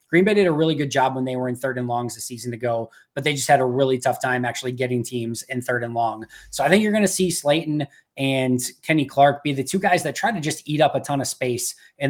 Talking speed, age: 295 wpm, 20-39